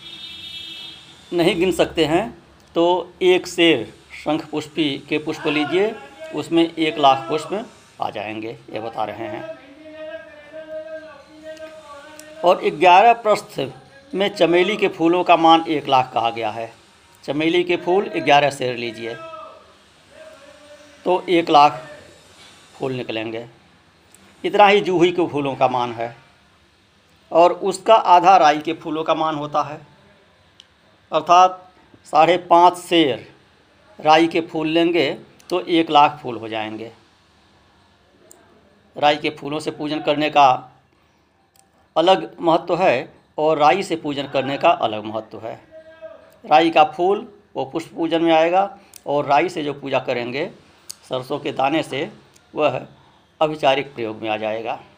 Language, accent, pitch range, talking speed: Hindi, native, 120-185 Hz, 135 wpm